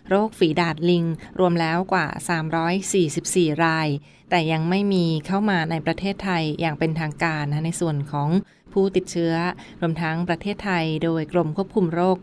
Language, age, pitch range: Thai, 20-39, 165-200 Hz